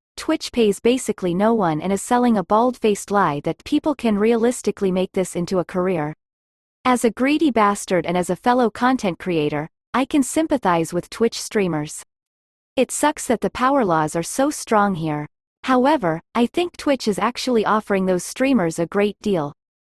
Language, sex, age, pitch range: English, female, 30-49, 185-250 Hz